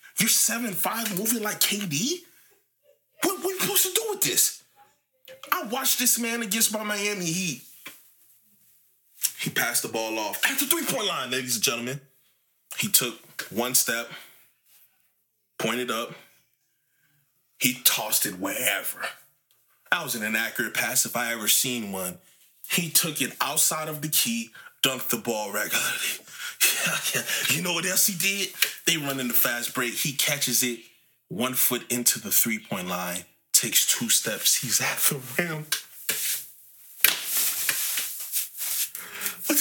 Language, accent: English, American